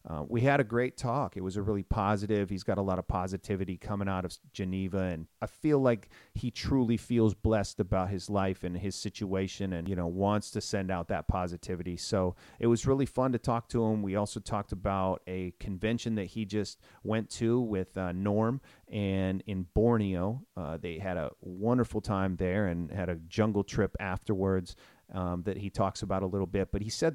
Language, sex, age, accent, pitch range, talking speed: English, male, 30-49, American, 95-115 Hz, 210 wpm